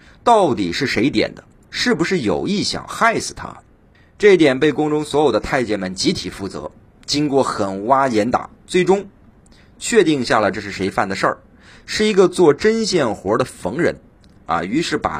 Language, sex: Chinese, male